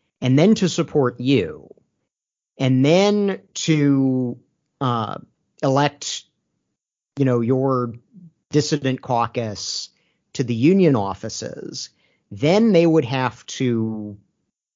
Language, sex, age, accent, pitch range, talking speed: English, male, 50-69, American, 115-145 Hz, 100 wpm